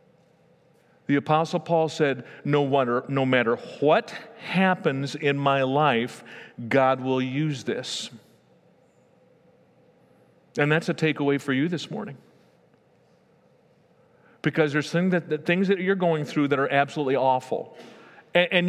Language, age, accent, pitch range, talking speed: English, 50-69, American, 140-180 Hz, 120 wpm